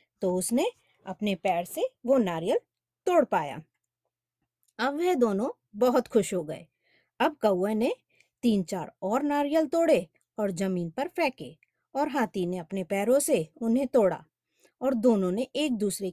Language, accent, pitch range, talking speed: Hindi, native, 180-280 Hz, 155 wpm